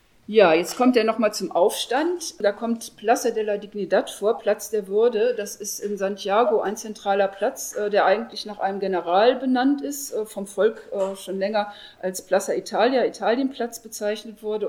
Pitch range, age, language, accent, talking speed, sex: 185-225 Hz, 50-69, German, German, 170 wpm, female